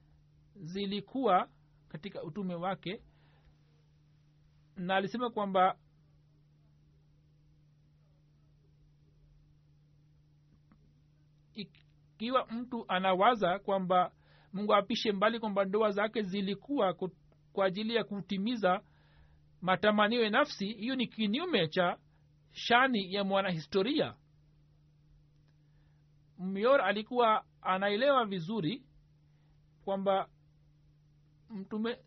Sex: male